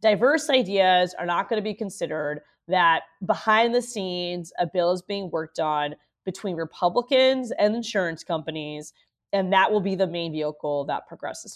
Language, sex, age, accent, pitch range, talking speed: English, female, 20-39, American, 165-220 Hz, 165 wpm